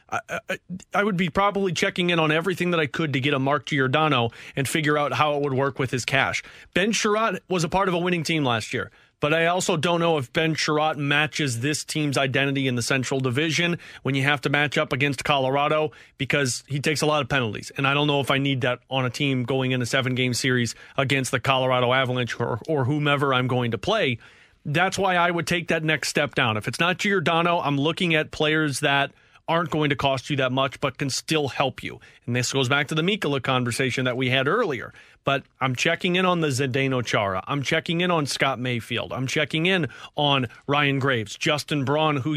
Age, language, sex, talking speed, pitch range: 30-49, English, male, 230 wpm, 135-170 Hz